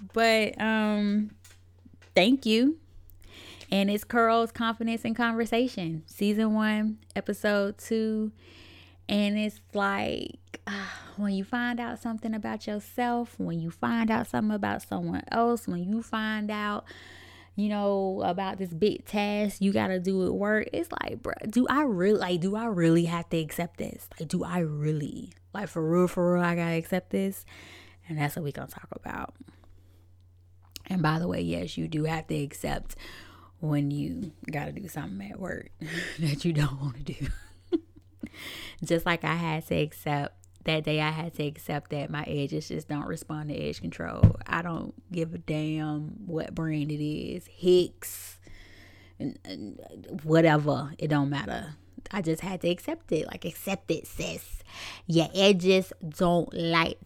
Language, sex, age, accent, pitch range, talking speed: English, female, 10-29, American, 140-205 Hz, 165 wpm